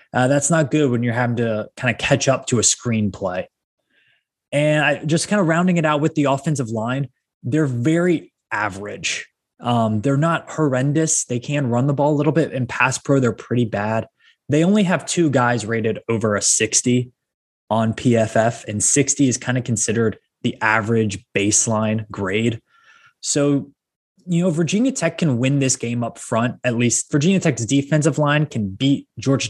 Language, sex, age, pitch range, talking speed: English, male, 20-39, 110-145 Hz, 180 wpm